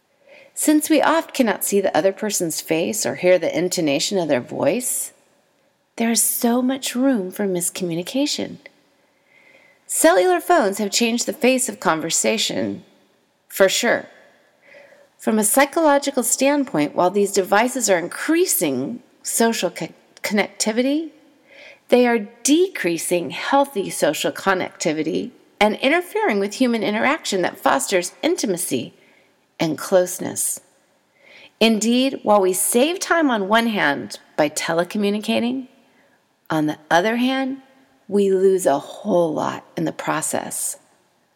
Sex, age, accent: female, 40-59, American